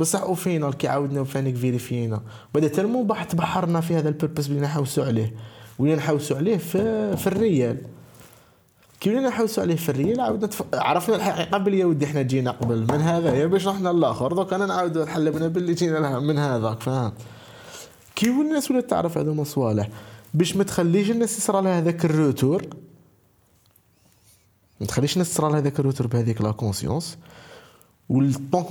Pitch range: 115-170 Hz